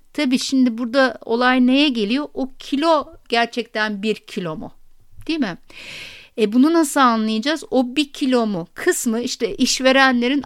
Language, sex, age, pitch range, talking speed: Turkish, female, 60-79, 230-275 Hz, 145 wpm